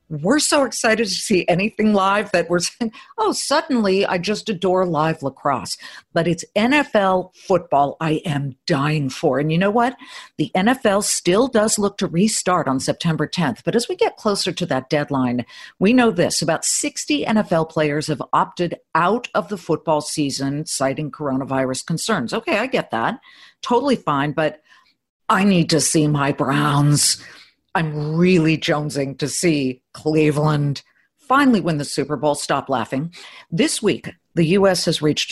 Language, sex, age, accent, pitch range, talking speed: English, female, 50-69, American, 145-205 Hz, 165 wpm